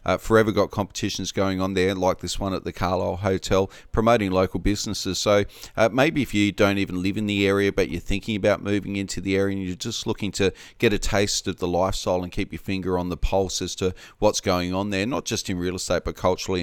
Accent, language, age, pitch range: Australian, English, 30-49, 90-100 Hz